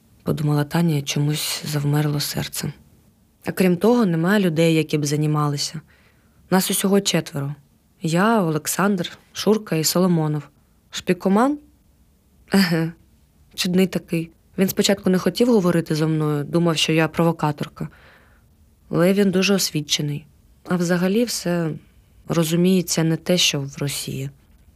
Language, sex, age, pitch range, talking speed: Ukrainian, female, 20-39, 150-175 Hz, 120 wpm